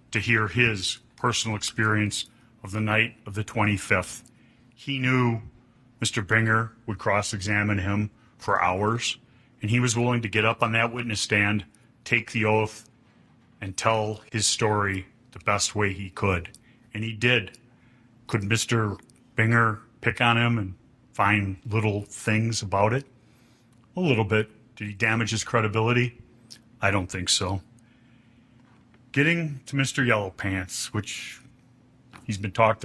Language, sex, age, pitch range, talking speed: English, male, 40-59, 110-125 Hz, 145 wpm